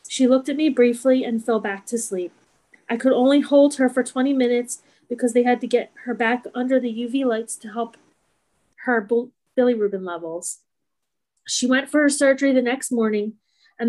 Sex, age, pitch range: female, 30-49, 225-260 Hz